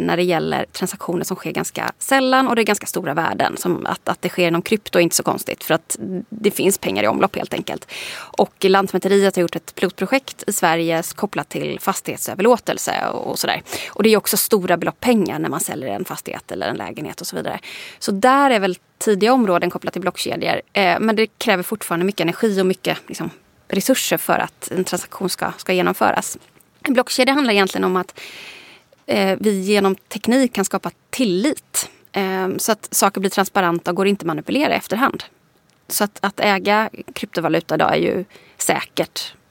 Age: 30-49